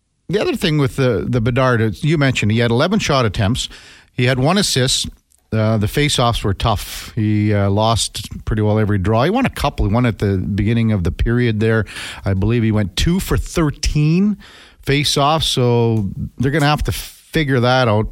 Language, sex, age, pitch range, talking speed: English, male, 50-69, 100-130 Hz, 200 wpm